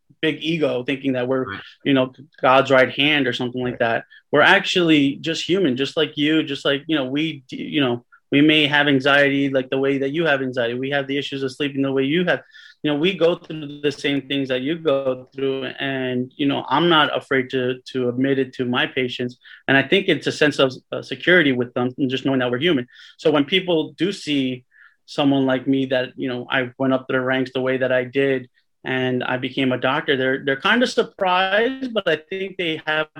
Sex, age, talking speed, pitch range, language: male, 30-49, 230 wpm, 130-155 Hz, English